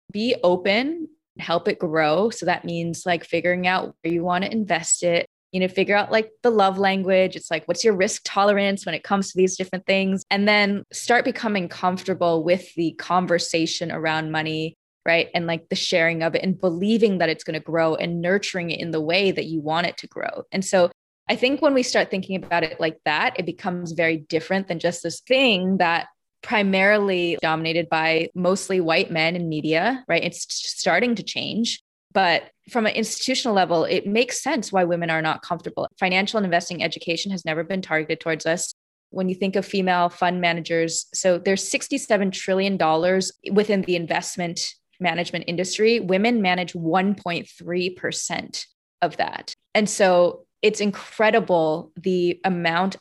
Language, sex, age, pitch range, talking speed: English, female, 20-39, 170-200 Hz, 180 wpm